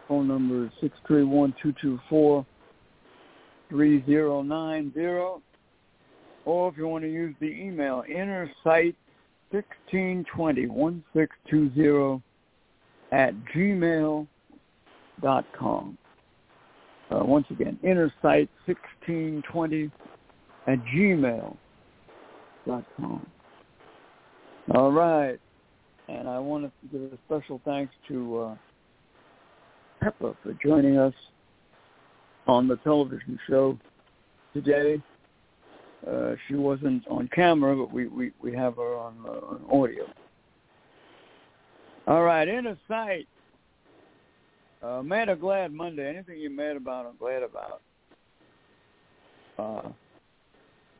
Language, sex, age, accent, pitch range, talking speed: English, male, 60-79, American, 135-170 Hz, 90 wpm